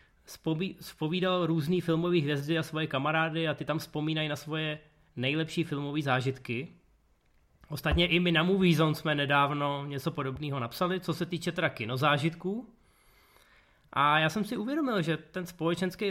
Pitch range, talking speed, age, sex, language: 140-175 Hz, 145 wpm, 20-39, male, Czech